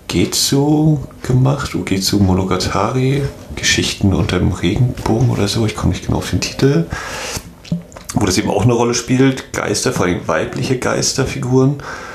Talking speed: 145 wpm